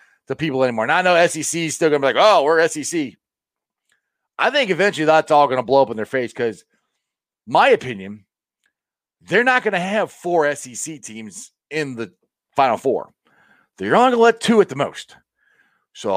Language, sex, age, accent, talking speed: English, male, 40-59, American, 195 wpm